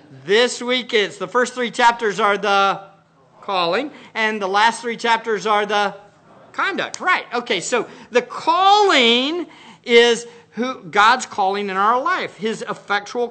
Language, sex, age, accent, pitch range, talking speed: English, male, 50-69, American, 210-260 Hz, 145 wpm